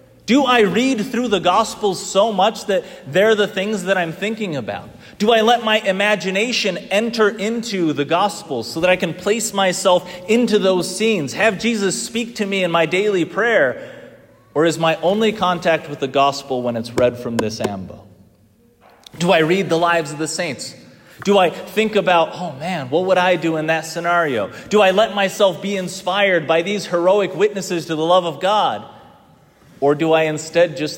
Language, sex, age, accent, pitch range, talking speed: English, male, 30-49, American, 135-195 Hz, 190 wpm